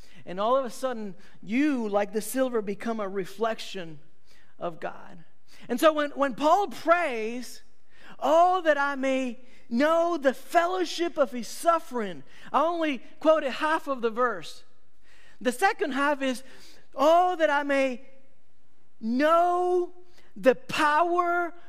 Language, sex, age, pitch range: English, male, 50-69, 260-335 Hz